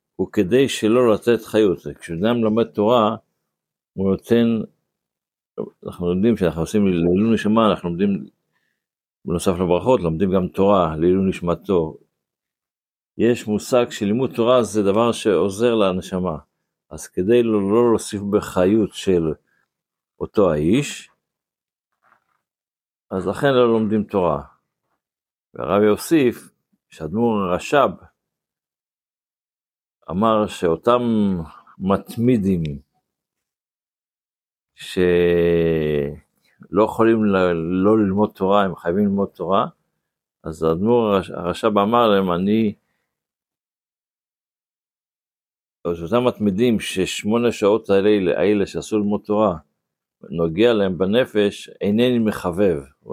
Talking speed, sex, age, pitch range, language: 95 wpm, male, 60-79, 90-115 Hz, Hebrew